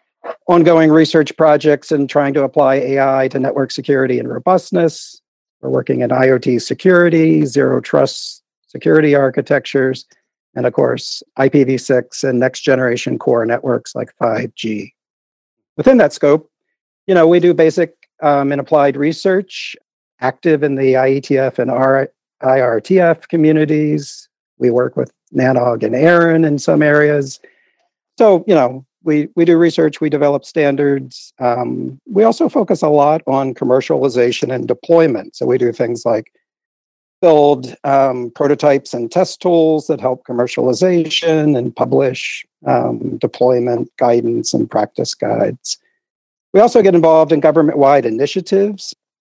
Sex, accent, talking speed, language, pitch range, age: male, American, 130 wpm, English, 130-160 Hz, 50-69